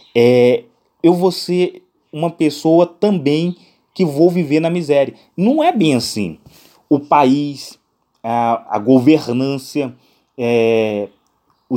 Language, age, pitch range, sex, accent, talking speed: Portuguese, 30-49, 125-165 Hz, male, Brazilian, 105 wpm